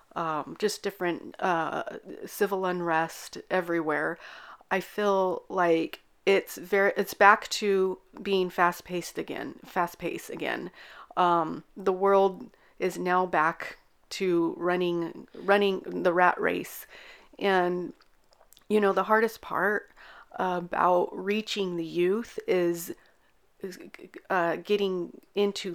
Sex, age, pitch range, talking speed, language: female, 40-59, 170-195 Hz, 110 wpm, English